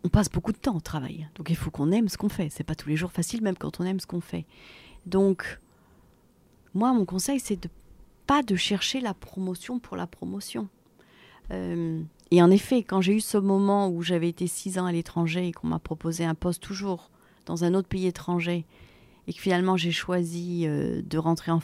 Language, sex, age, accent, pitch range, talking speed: French, female, 40-59, French, 170-210 Hz, 225 wpm